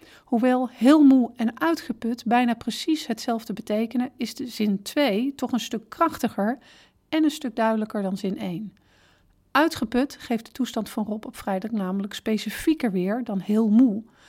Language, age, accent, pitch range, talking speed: Dutch, 40-59, Dutch, 215-265 Hz, 160 wpm